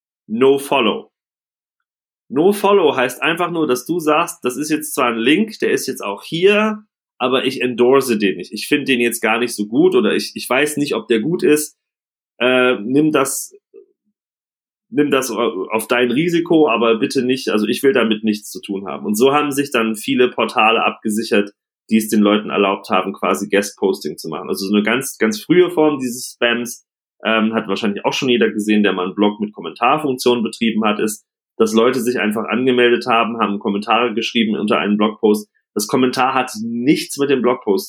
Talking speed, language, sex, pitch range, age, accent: 195 wpm, German, male, 110-145 Hz, 30-49, German